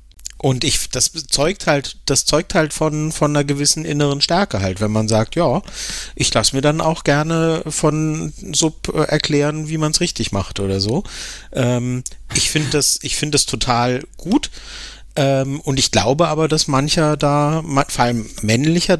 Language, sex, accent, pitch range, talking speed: German, male, German, 125-155 Hz, 175 wpm